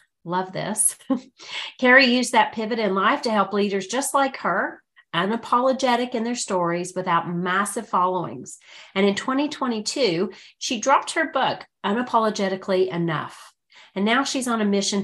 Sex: female